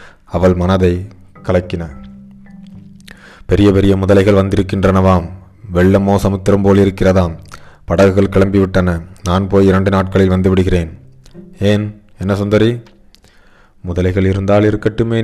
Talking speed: 95 wpm